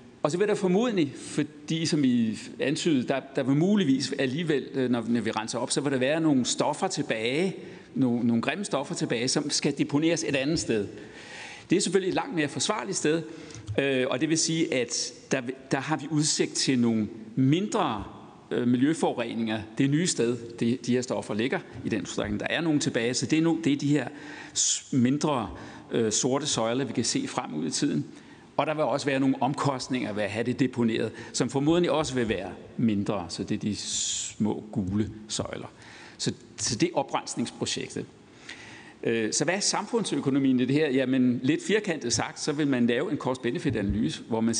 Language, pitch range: Danish, 120-155 Hz